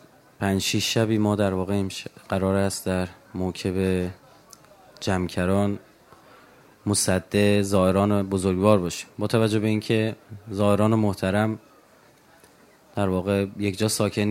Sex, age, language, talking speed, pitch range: male, 30-49, Persian, 115 wpm, 100-115 Hz